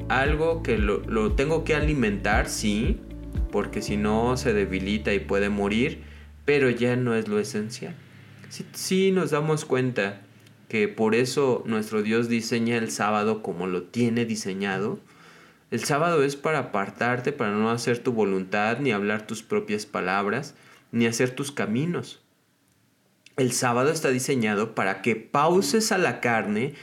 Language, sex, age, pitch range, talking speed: Spanish, male, 30-49, 110-150 Hz, 155 wpm